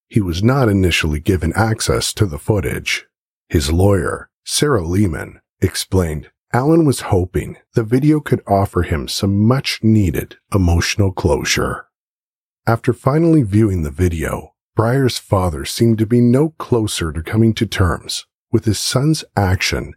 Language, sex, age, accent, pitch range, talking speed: English, male, 50-69, American, 85-120 Hz, 140 wpm